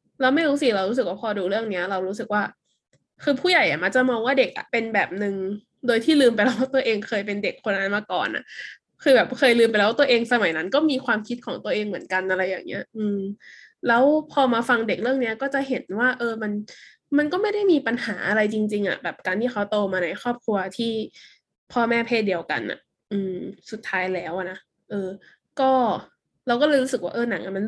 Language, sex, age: Thai, female, 10-29